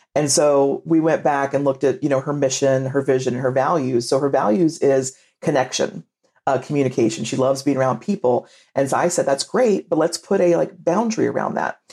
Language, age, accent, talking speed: English, 40-59, American, 205 wpm